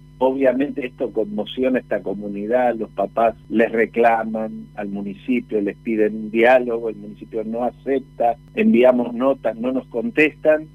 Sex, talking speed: male, 140 wpm